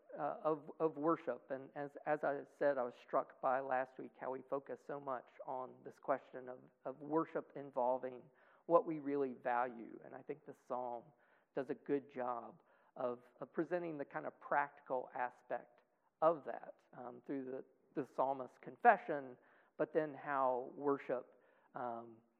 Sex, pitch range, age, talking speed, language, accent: male, 125-160 Hz, 40-59, 165 wpm, English, American